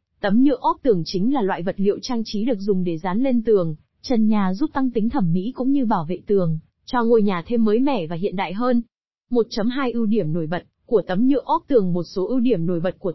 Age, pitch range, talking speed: 20-39, 195-255 Hz, 255 wpm